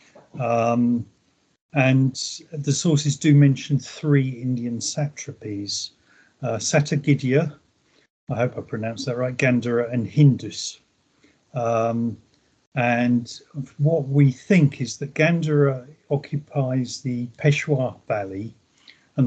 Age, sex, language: 40-59, male, English